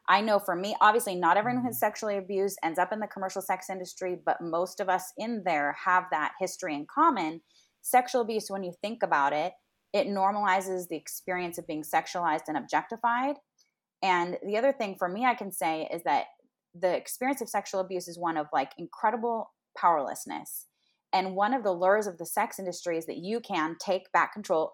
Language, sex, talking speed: English, female, 200 wpm